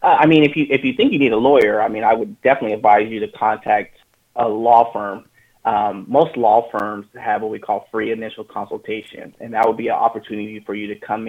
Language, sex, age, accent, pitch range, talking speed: English, male, 30-49, American, 110-135 Hz, 235 wpm